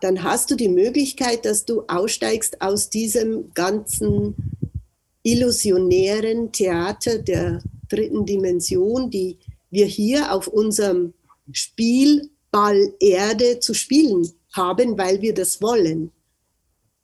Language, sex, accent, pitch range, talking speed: German, female, German, 195-245 Hz, 105 wpm